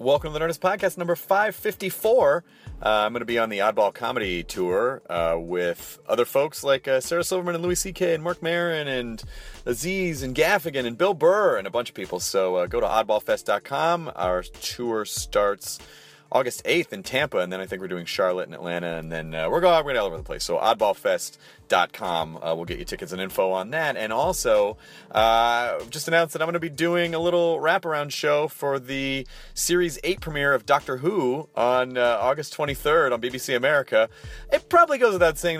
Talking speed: 205 wpm